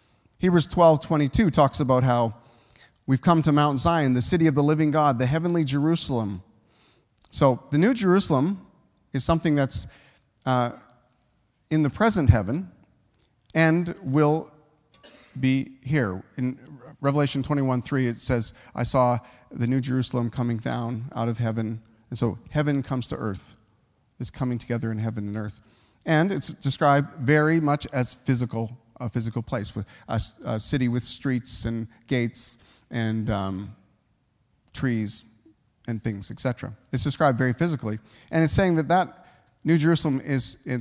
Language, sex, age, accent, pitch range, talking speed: English, male, 40-59, American, 115-150 Hz, 150 wpm